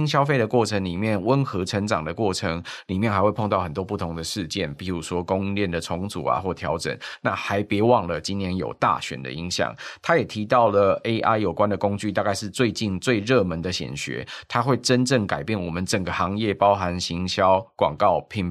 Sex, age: male, 20-39